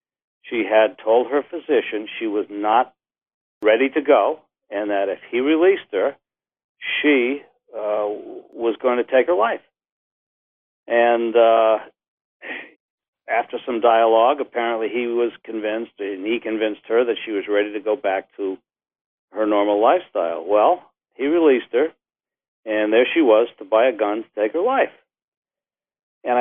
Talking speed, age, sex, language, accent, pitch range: 150 wpm, 60-79, male, English, American, 105-140 Hz